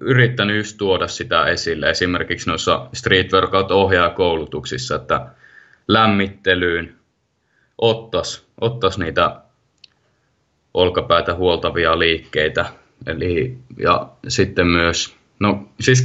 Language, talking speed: Finnish, 85 wpm